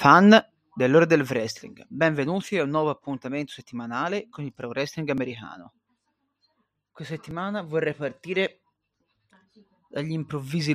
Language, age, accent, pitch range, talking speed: Italian, 30-49, native, 130-165 Hz, 115 wpm